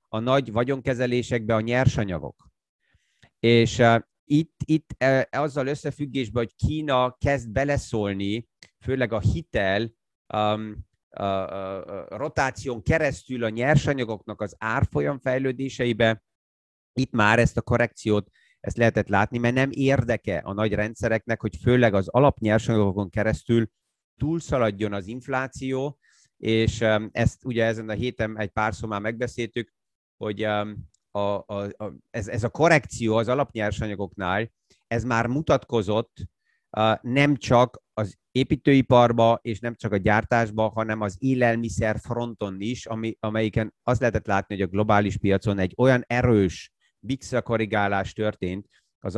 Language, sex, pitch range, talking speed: Hungarian, male, 105-125 Hz, 130 wpm